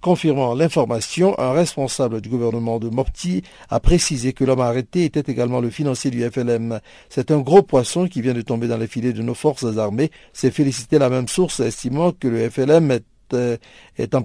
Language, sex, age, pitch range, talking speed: French, male, 50-69, 120-150 Hz, 195 wpm